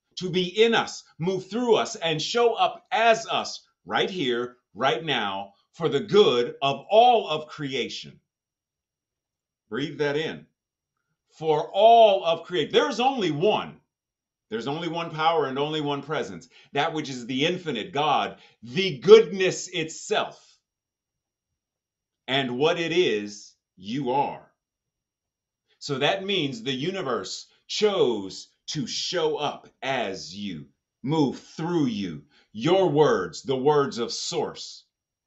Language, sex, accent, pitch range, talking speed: English, male, American, 145-220 Hz, 130 wpm